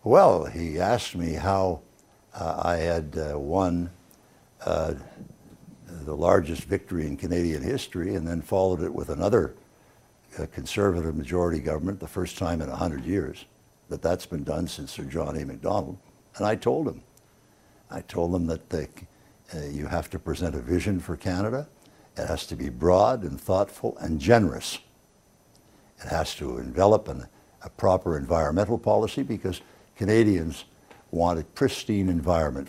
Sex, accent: male, American